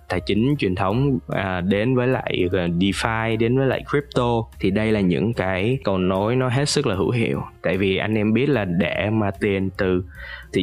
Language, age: Vietnamese, 20-39